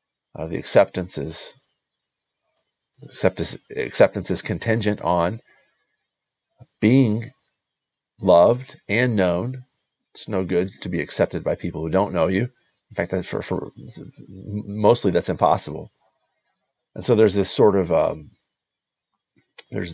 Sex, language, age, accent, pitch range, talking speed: male, English, 50-69, American, 90-115 Hz, 125 wpm